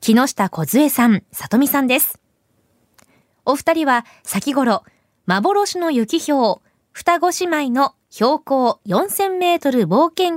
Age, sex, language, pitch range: 20-39, female, Japanese, 230-340 Hz